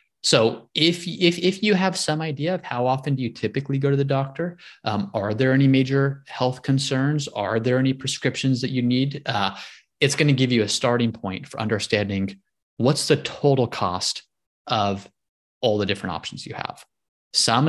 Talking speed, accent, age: 185 wpm, American, 20-39